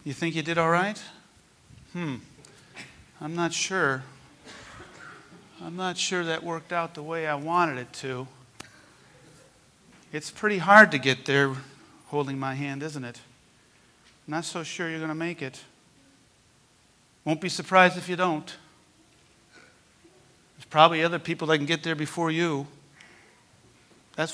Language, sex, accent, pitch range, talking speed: English, male, American, 130-165 Hz, 145 wpm